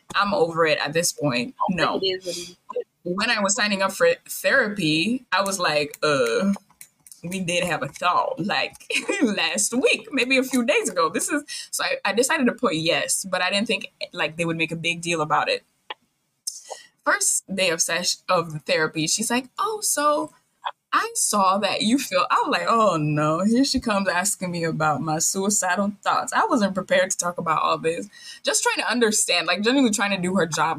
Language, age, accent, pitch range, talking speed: English, 20-39, American, 165-240 Hz, 195 wpm